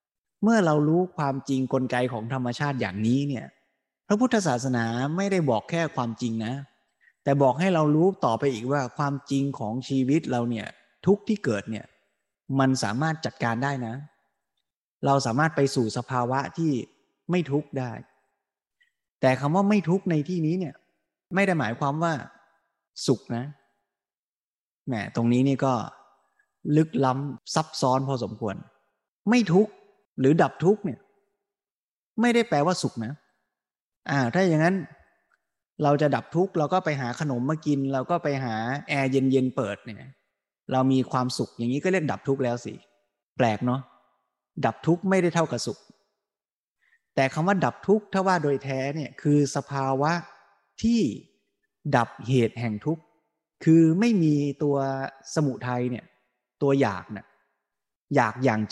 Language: Thai